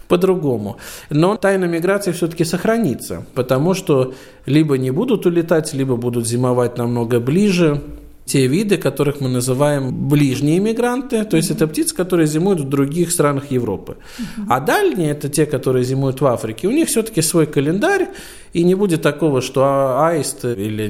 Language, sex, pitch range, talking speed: Russian, male, 125-175 Hz, 160 wpm